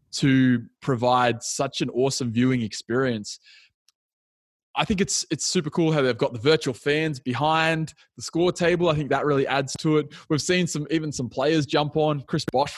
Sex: male